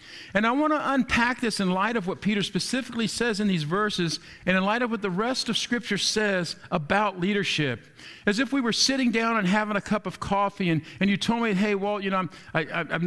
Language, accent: English, American